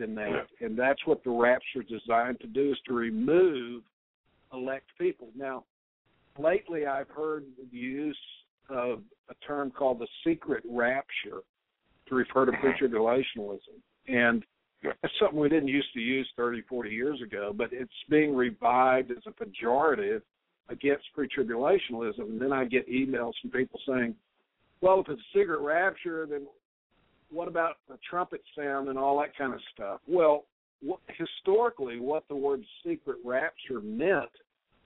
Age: 60-79